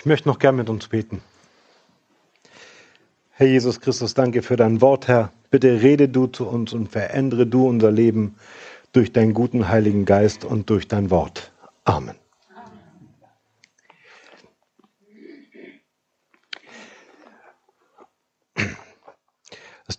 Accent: German